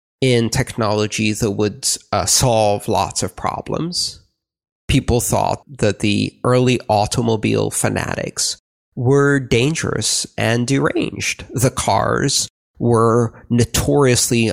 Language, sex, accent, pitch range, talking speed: English, male, American, 110-130 Hz, 95 wpm